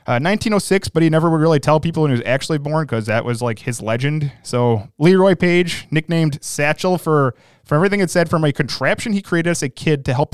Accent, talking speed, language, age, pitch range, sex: American, 230 wpm, English, 20-39, 130-165 Hz, male